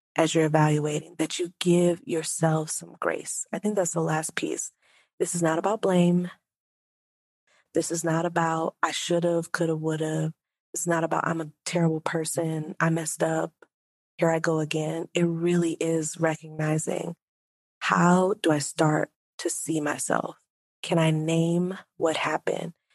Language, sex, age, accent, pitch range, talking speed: English, female, 30-49, American, 160-190 Hz, 160 wpm